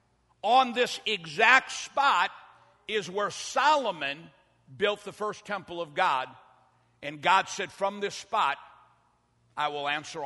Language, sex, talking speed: English, male, 130 wpm